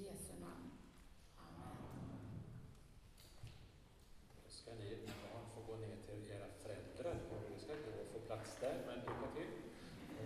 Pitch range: 115-150 Hz